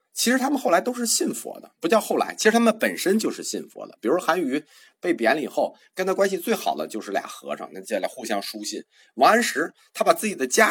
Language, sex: Chinese, male